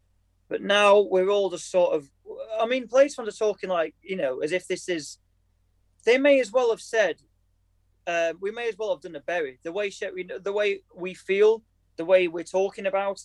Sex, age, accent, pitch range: male, 20-39, British, 145-200 Hz